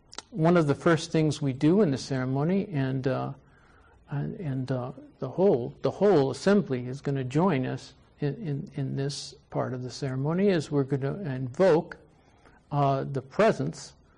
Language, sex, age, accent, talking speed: English, male, 60-79, American, 180 wpm